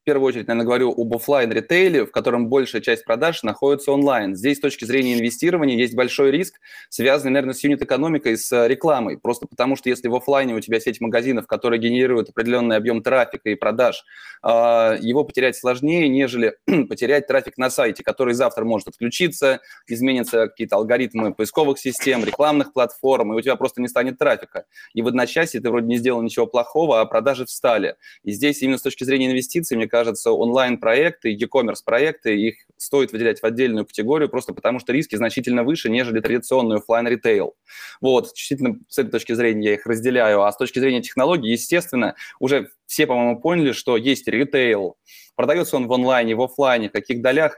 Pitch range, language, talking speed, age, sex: 115-135 Hz, Russian, 175 wpm, 20-39, male